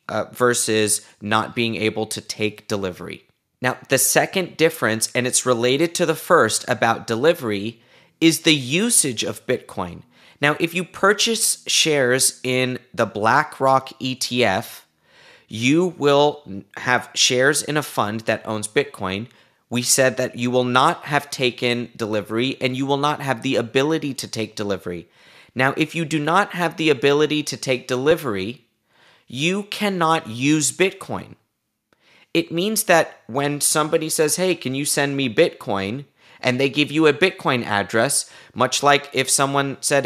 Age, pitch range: 30-49, 120-160 Hz